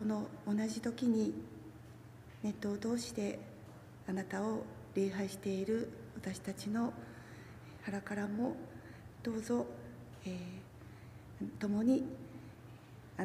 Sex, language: female, Japanese